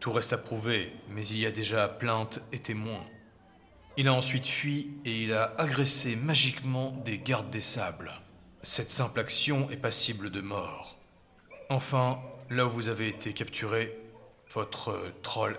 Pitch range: 110-145 Hz